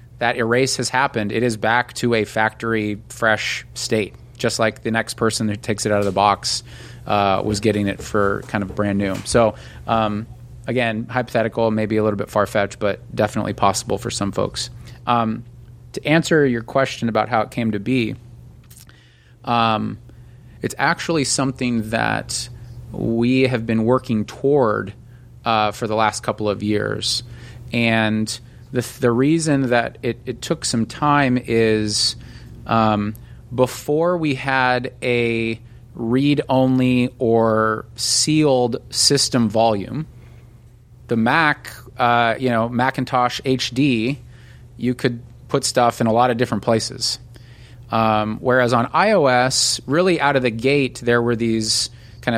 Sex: male